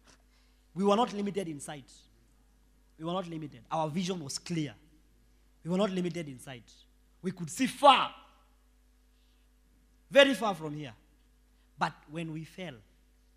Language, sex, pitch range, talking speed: English, male, 125-180 Hz, 145 wpm